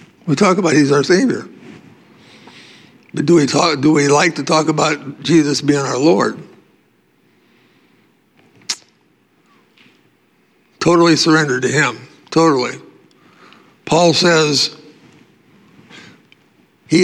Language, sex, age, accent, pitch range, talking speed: English, male, 60-79, American, 140-170 Hz, 90 wpm